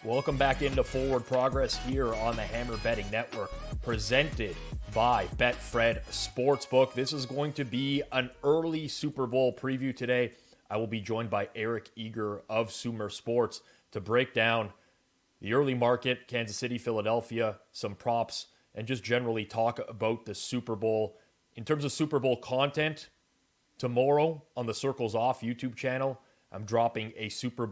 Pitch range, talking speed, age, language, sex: 110-130 Hz, 155 wpm, 30-49, English, male